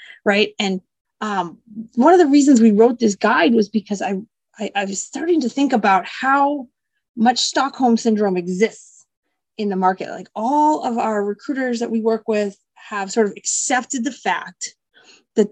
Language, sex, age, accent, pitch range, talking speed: English, female, 30-49, American, 210-275 Hz, 175 wpm